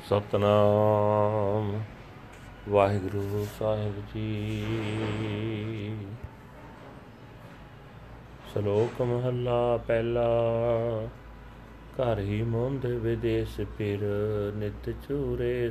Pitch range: 110-125 Hz